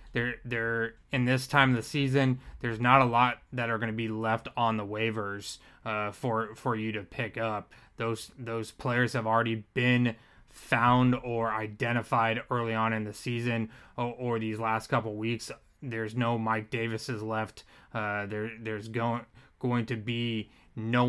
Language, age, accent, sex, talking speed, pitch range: English, 20-39, American, male, 170 wpm, 110-125 Hz